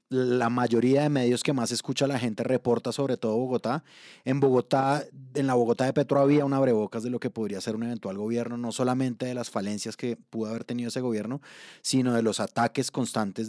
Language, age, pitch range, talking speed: Spanish, 30-49, 115-135 Hz, 210 wpm